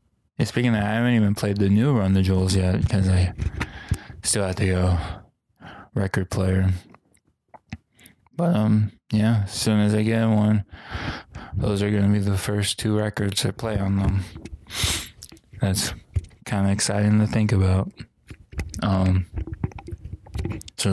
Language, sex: English, male